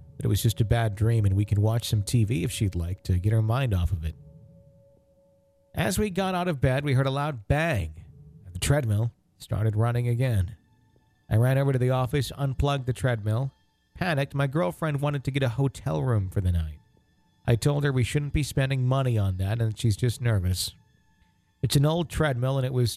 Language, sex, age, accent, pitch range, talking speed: English, male, 40-59, American, 105-140 Hz, 215 wpm